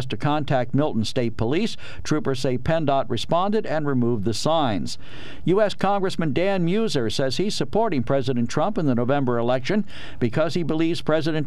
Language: English